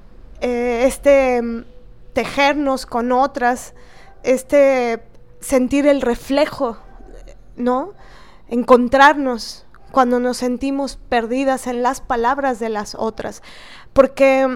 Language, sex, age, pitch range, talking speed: Spanish, female, 20-39, 235-275 Hz, 85 wpm